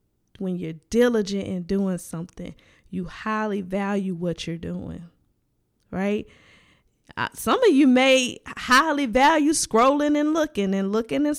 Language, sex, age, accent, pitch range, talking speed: English, female, 20-39, American, 185-230 Hz, 135 wpm